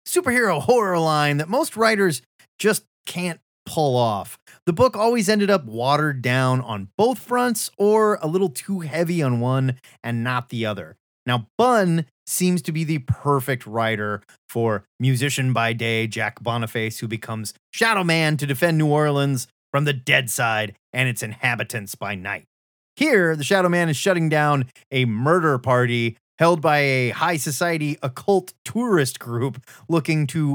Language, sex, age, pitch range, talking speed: English, male, 30-49, 120-175 Hz, 160 wpm